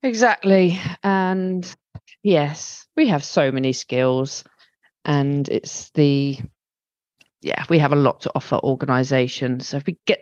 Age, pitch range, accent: 40-59, 150-190 Hz, British